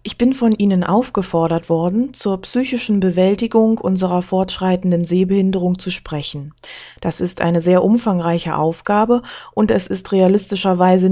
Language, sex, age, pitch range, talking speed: German, female, 20-39, 175-205 Hz, 130 wpm